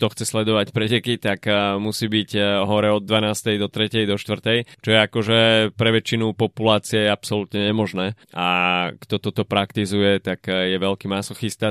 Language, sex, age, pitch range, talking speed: Slovak, male, 20-39, 95-110 Hz, 155 wpm